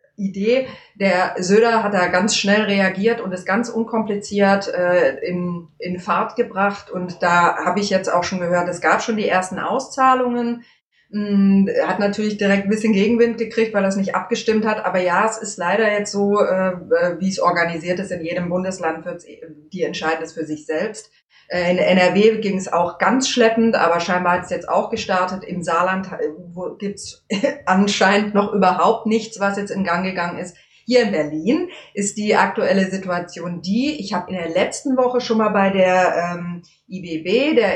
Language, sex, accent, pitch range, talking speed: German, female, German, 180-215 Hz, 185 wpm